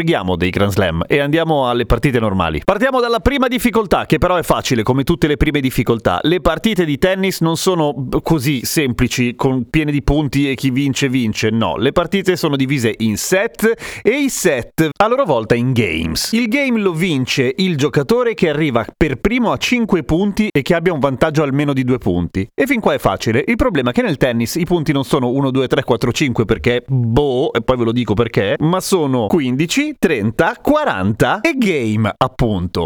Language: Italian